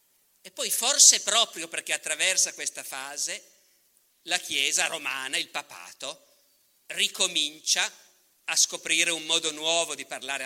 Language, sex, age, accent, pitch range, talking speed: Italian, male, 50-69, native, 150-185 Hz, 120 wpm